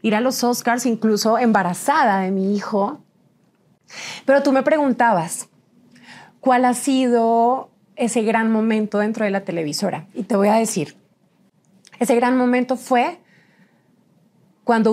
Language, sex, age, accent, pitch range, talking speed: English, female, 30-49, Colombian, 195-240 Hz, 135 wpm